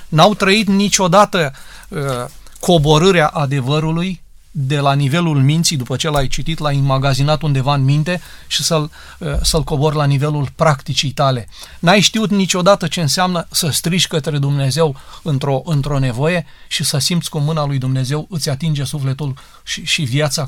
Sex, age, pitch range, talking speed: male, 30-49, 135-165 Hz, 155 wpm